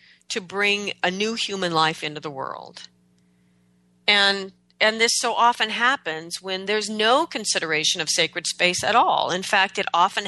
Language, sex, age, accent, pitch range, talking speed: English, female, 40-59, American, 160-210 Hz, 165 wpm